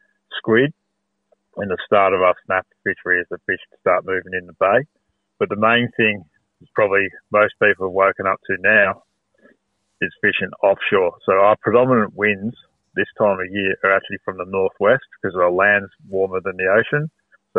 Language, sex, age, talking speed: English, male, 30-49, 185 wpm